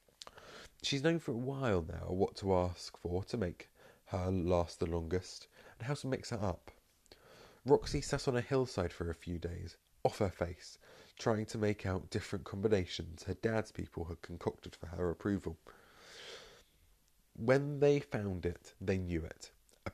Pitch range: 85-110 Hz